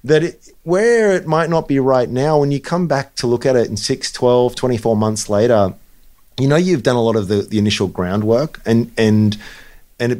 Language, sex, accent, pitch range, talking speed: English, male, Australian, 100-125 Hz, 225 wpm